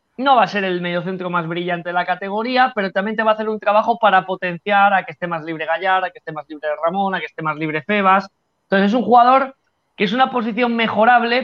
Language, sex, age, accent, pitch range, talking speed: Spanish, male, 30-49, Spanish, 170-220 Hz, 250 wpm